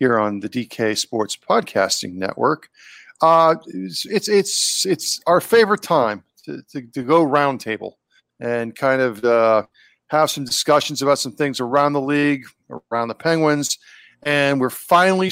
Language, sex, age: English, male, 40-59